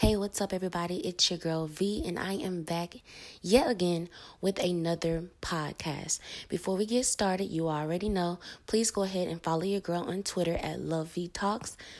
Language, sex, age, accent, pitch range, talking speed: English, female, 20-39, American, 160-195 Hz, 175 wpm